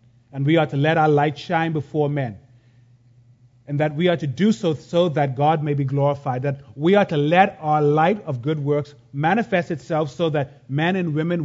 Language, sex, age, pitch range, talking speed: English, male, 30-49, 120-160 Hz, 210 wpm